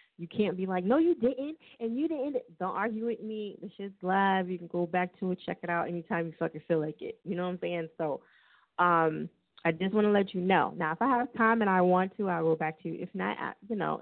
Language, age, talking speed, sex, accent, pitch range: English, 20-39, 285 wpm, female, American, 170-235 Hz